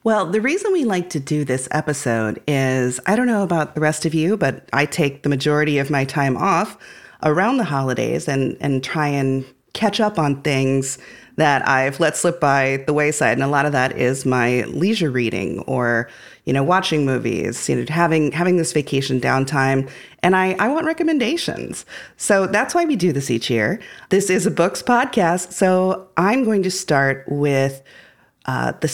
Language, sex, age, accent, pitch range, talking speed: English, female, 30-49, American, 135-185 Hz, 190 wpm